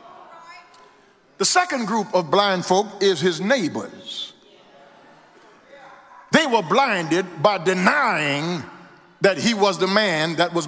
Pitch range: 190-285 Hz